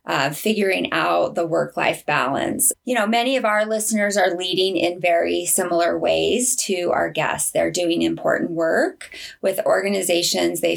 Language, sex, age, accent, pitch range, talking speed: English, female, 20-39, American, 175-230 Hz, 155 wpm